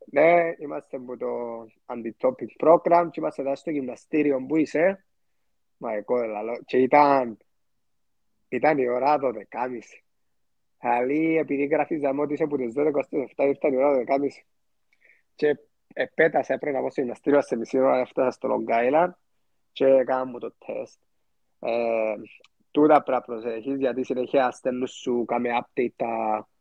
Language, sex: Greek, male